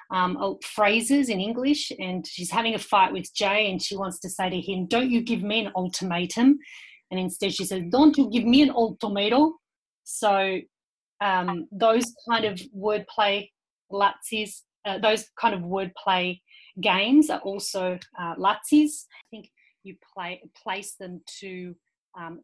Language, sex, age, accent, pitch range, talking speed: English, female, 30-49, Australian, 185-225 Hz, 150 wpm